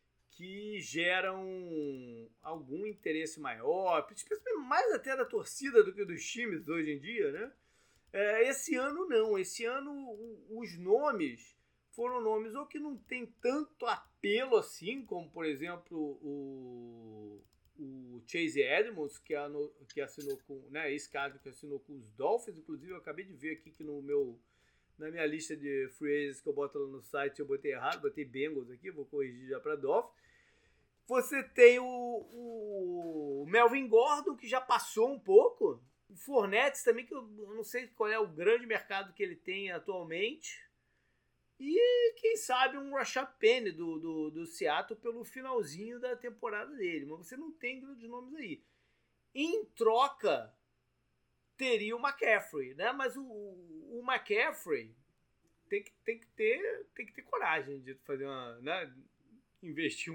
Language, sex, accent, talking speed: Portuguese, male, Brazilian, 155 wpm